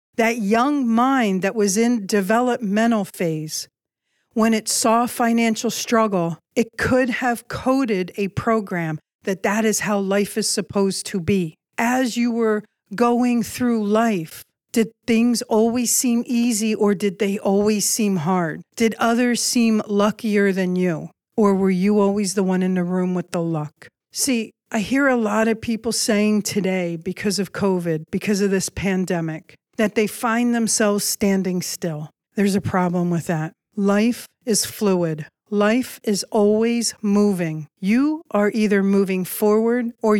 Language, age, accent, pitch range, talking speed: English, 50-69, American, 185-225 Hz, 155 wpm